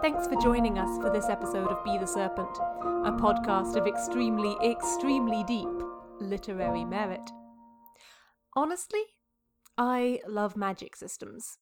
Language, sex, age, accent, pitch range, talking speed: English, female, 30-49, British, 195-265 Hz, 125 wpm